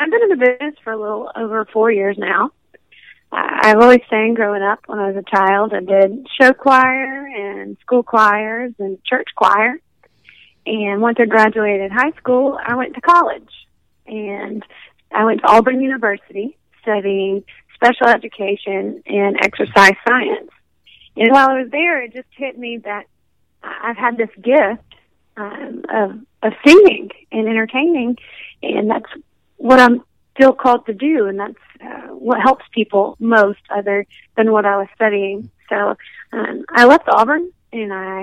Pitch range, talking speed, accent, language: 205-255 Hz, 160 wpm, American, English